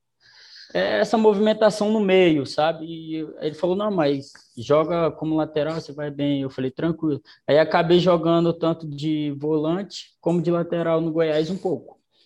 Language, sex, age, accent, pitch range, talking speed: Portuguese, male, 20-39, Brazilian, 125-160 Hz, 155 wpm